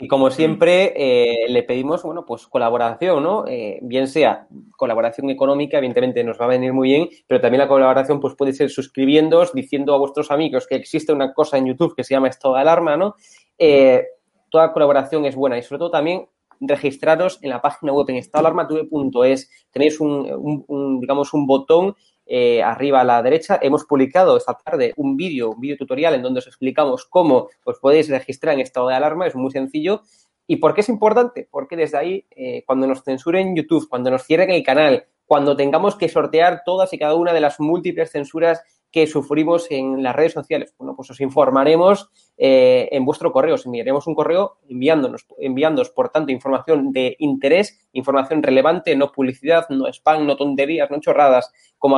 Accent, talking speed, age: Spanish, 190 wpm, 20-39